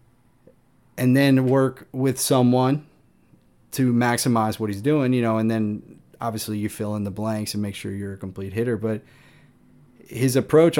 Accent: American